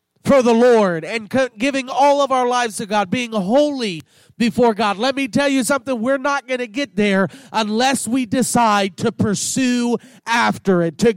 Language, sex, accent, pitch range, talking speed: English, male, American, 195-265 Hz, 185 wpm